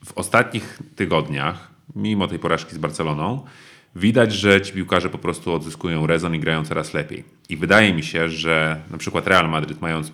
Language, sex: Polish, male